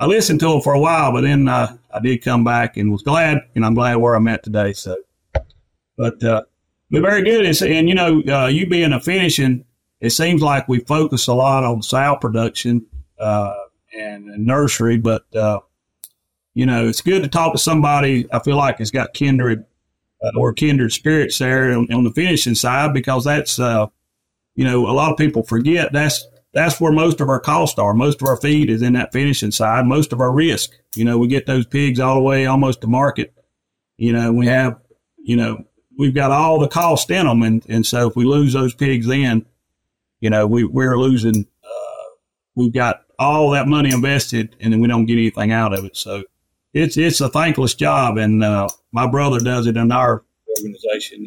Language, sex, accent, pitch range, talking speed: English, male, American, 115-145 Hz, 210 wpm